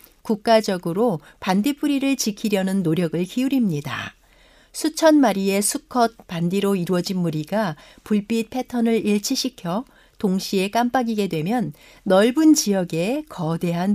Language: Korean